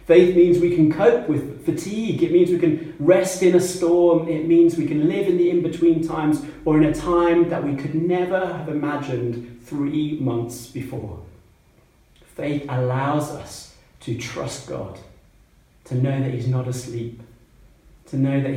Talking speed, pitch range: 170 wpm, 125-165 Hz